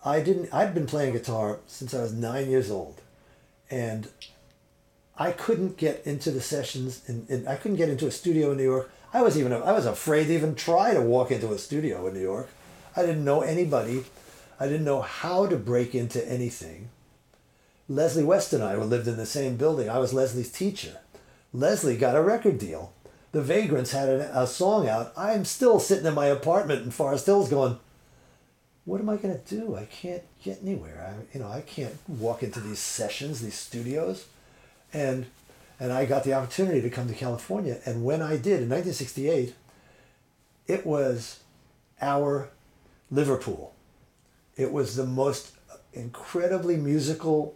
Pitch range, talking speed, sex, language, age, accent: 120-155 Hz, 180 wpm, male, English, 50-69, American